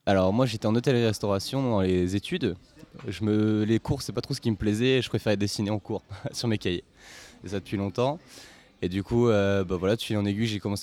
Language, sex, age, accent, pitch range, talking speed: French, male, 20-39, French, 95-120 Hz, 250 wpm